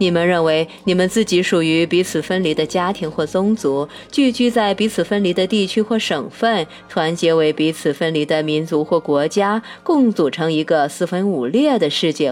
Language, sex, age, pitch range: Chinese, female, 30-49, 155-210 Hz